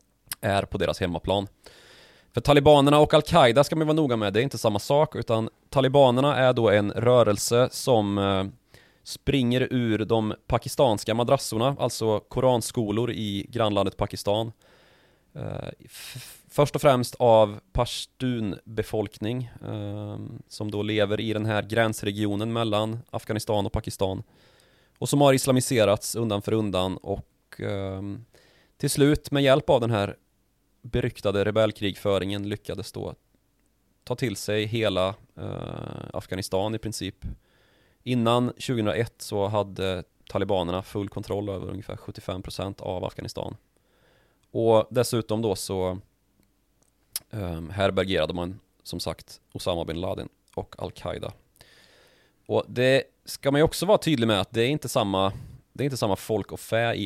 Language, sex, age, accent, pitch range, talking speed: Swedish, male, 30-49, native, 100-125 Hz, 140 wpm